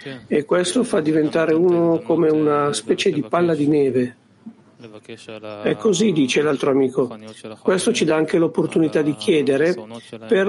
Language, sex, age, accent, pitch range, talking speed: Italian, male, 60-79, native, 115-165 Hz, 145 wpm